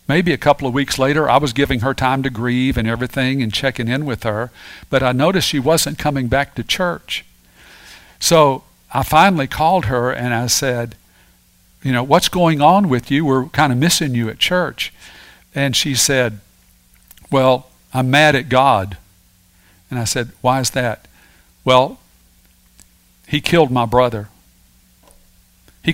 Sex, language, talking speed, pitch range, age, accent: male, English, 165 wpm, 115-150 Hz, 50-69, American